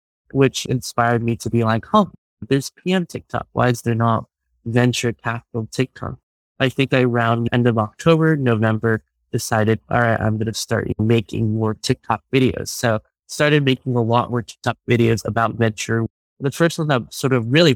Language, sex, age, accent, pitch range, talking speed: English, male, 20-39, American, 110-125 Hz, 180 wpm